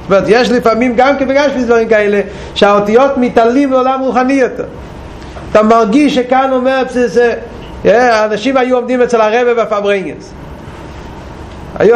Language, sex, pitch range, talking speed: Hebrew, male, 200-250 Hz, 135 wpm